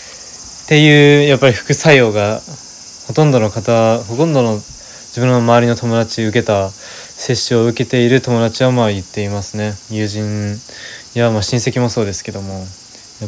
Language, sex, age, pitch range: Japanese, male, 20-39, 110-145 Hz